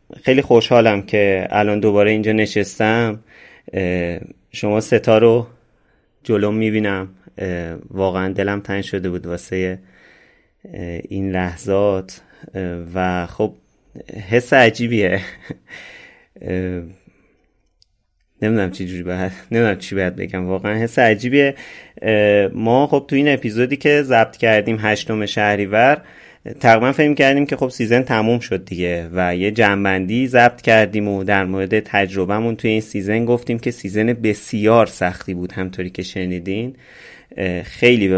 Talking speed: 120 wpm